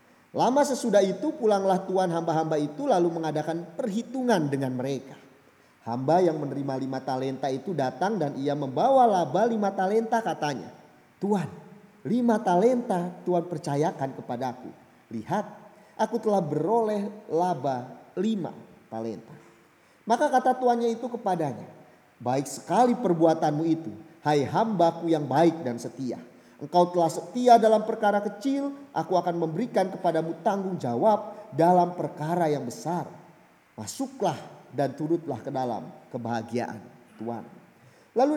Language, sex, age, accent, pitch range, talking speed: Indonesian, male, 30-49, native, 145-210 Hz, 120 wpm